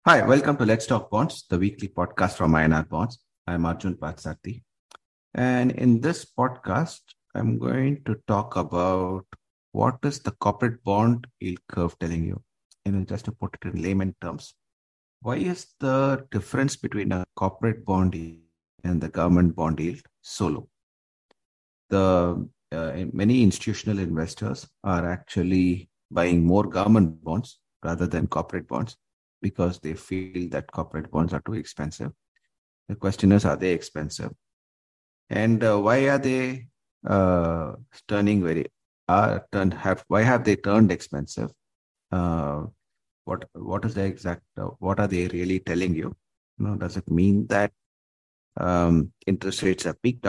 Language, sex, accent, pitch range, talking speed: English, male, Indian, 85-105 Hz, 150 wpm